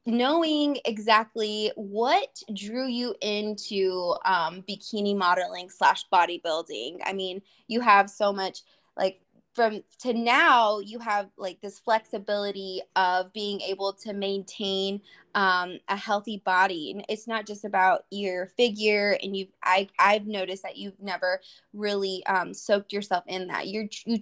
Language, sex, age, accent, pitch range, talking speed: English, female, 20-39, American, 190-215 Hz, 145 wpm